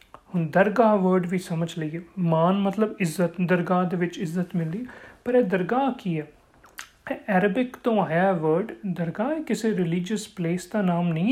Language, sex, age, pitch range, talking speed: Punjabi, male, 40-59, 180-245 Hz, 155 wpm